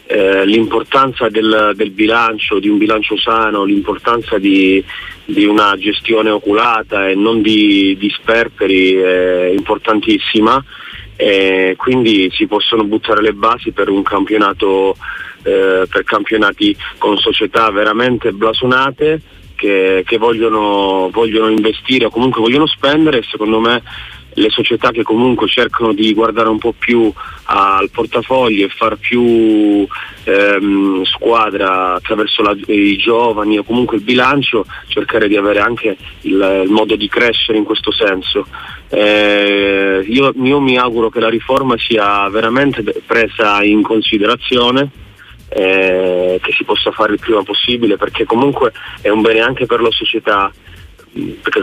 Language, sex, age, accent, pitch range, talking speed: Italian, male, 30-49, native, 100-120 Hz, 140 wpm